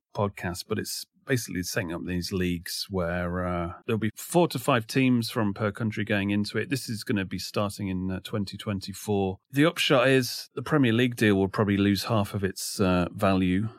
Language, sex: English, male